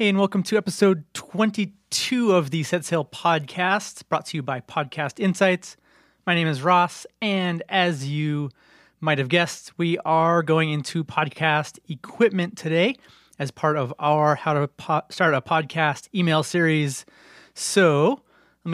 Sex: male